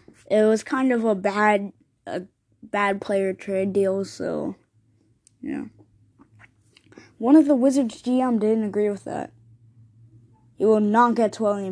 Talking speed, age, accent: 140 wpm, 10-29, American